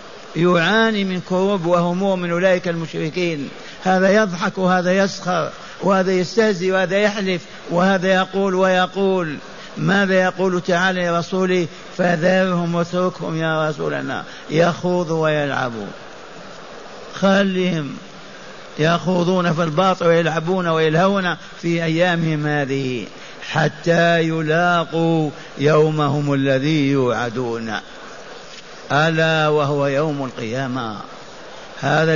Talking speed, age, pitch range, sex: 90 wpm, 60-79, 160-190 Hz, male